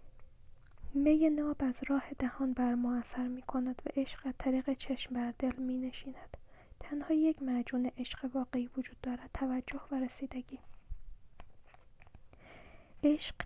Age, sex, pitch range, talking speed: 10-29, female, 265-285 Hz, 130 wpm